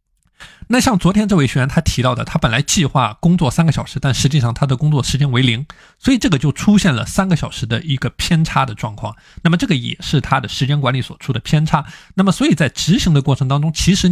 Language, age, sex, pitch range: Chinese, 20-39, male, 120-160 Hz